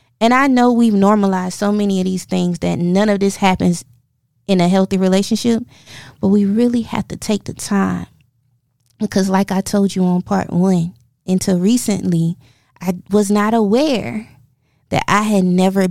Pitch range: 165-200 Hz